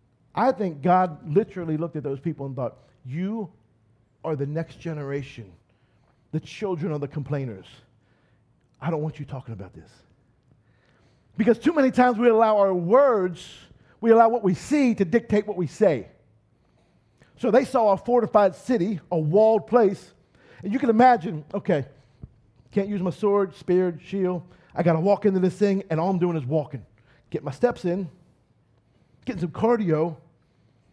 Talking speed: 165 wpm